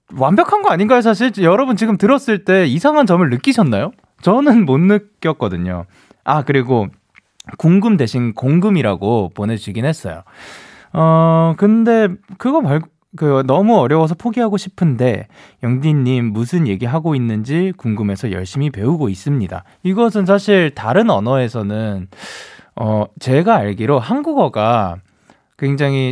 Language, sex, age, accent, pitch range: Korean, male, 20-39, native, 115-190 Hz